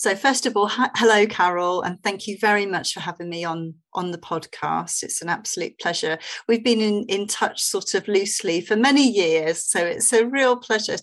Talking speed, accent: 205 wpm, British